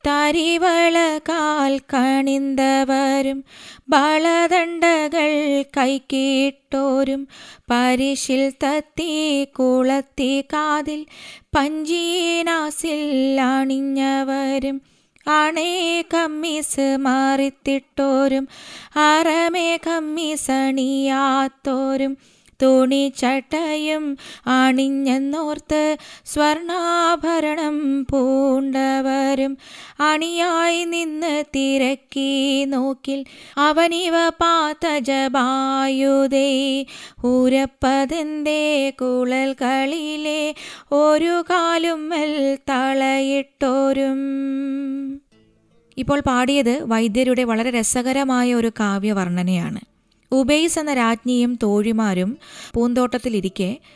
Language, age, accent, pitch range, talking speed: Malayalam, 20-39, native, 250-300 Hz, 45 wpm